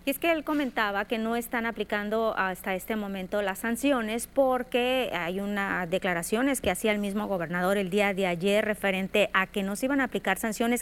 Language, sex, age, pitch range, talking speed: Spanish, female, 30-49, 195-245 Hz, 200 wpm